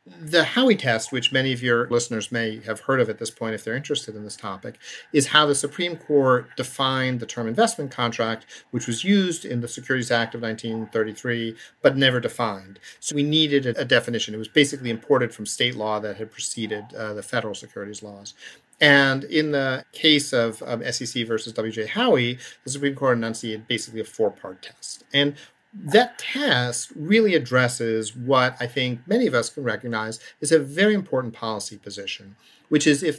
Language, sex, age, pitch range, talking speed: English, male, 50-69, 115-150 Hz, 185 wpm